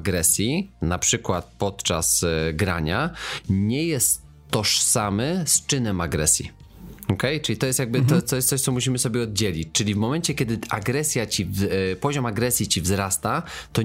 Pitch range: 95-120 Hz